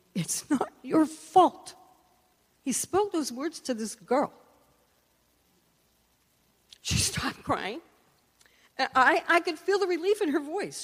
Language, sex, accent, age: English, female, American, 50-69